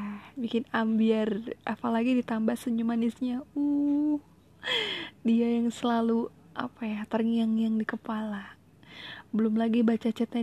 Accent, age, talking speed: native, 10-29, 110 wpm